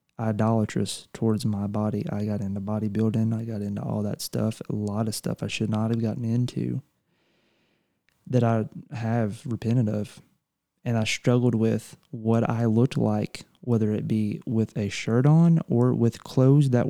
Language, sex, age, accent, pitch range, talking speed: English, male, 20-39, American, 110-125 Hz, 170 wpm